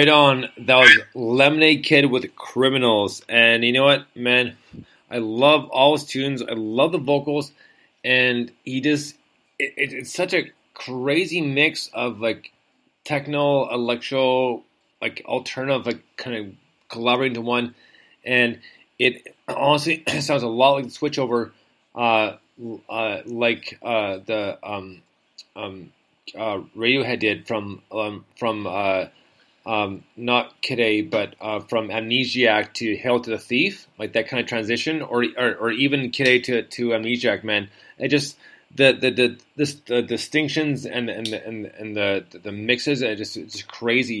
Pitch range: 110-135 Hz